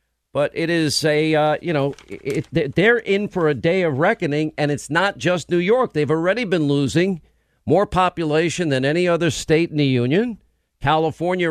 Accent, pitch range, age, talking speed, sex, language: American, 140-190 Hz, 50-69, 175 wpm, male, English